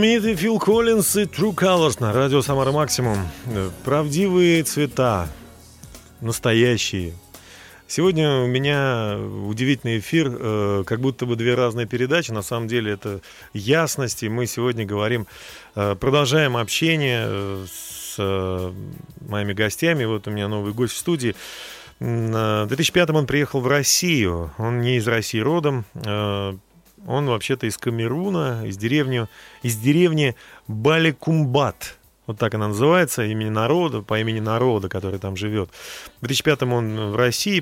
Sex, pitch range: male, 110-145 Hz